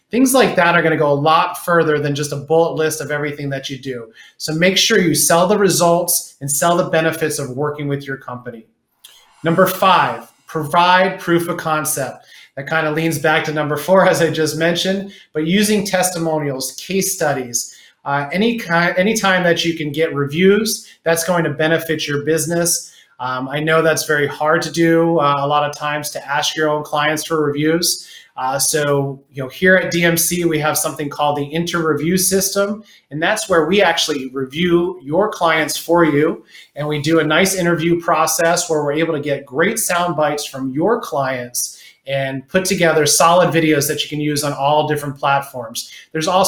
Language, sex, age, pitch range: English, male, 30-49, 145-170 Hz